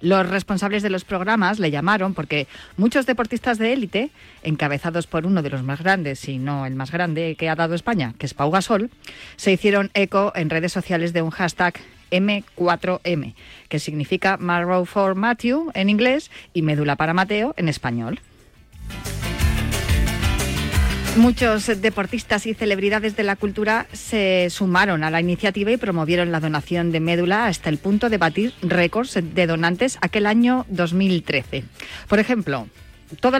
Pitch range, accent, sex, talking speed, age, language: 160-210 Hz, Spanish, female, 155 wpm, 30-49, Spanish